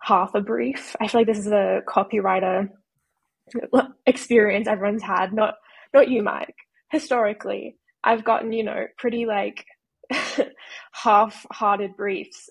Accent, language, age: Australian, English, 10-29